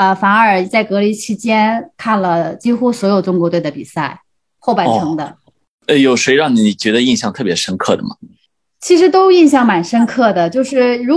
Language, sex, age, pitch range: Chinese, female, 20-39, 190-265 Hz